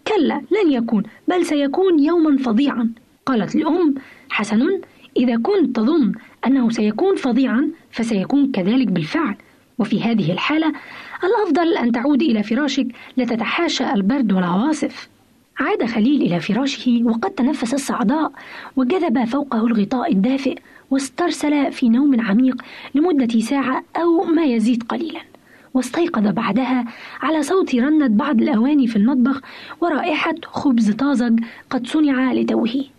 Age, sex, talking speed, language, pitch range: 20-39, female, 120 wpm, Arabic, 235-300 Hz